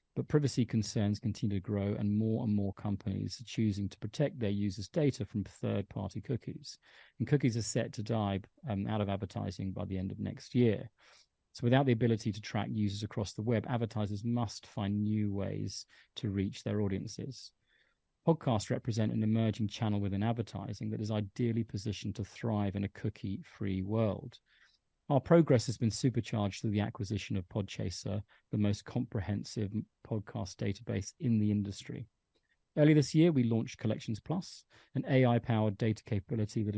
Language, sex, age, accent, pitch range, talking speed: English, male, 30-49, British, 105-120 Hz, 170 wpm